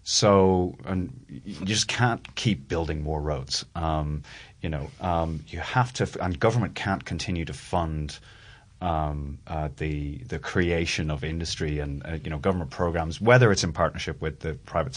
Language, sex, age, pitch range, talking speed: English, male, 30-49, 80-95 Hz, 170 wpm